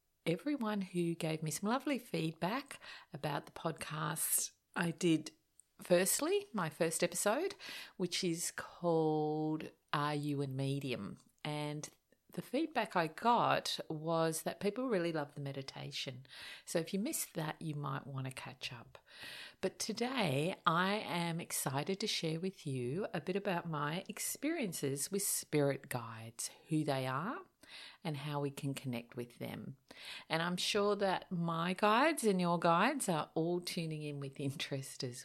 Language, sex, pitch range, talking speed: English, female, 145-205 Hz, 150 wpm